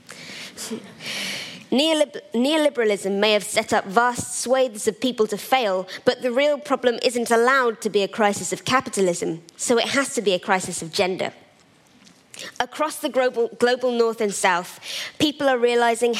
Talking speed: 155 wpm